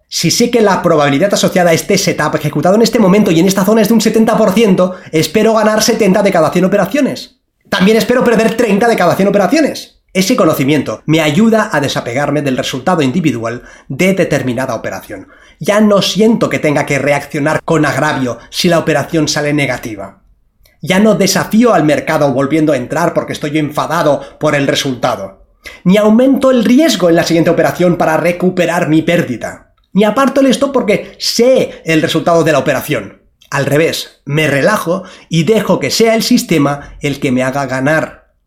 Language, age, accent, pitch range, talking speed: Spanish, 30-49, Spanish, 150-215 Hz, 180 wpm